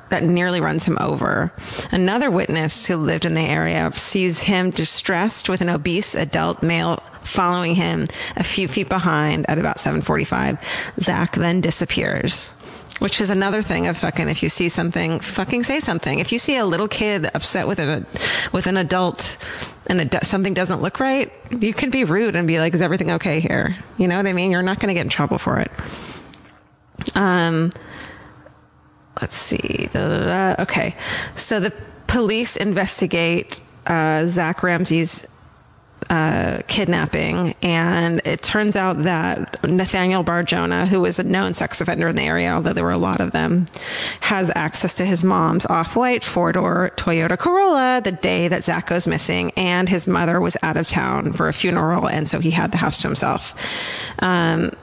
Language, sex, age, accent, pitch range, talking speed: English, female, 30-49, American, 170-195 Hz, 170 wpm